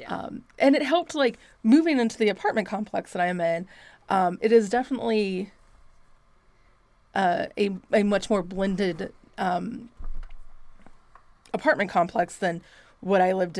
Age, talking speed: 30-49, 135 wpm